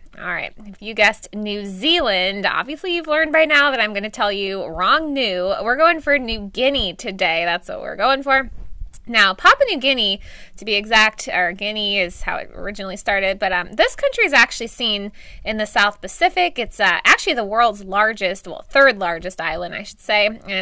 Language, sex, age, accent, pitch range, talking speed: English, female, 20-39, American, 195-270 Hz, 205 wpm